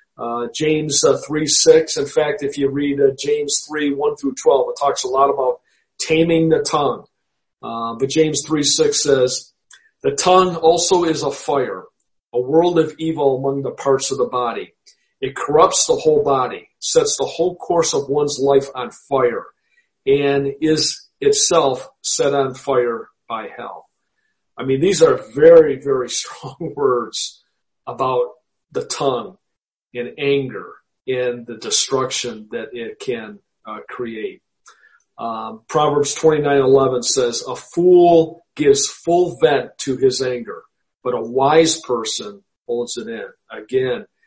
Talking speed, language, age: 150 wpm, English, 50-69